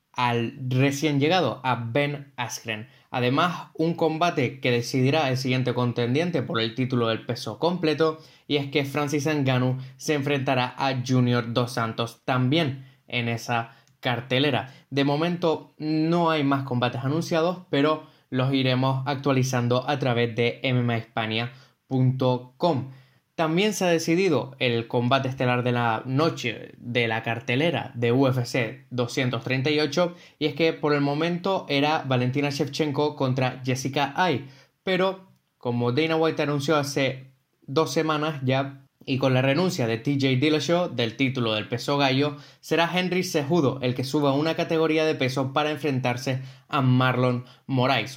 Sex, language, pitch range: male, Spanish, 125-150 Hz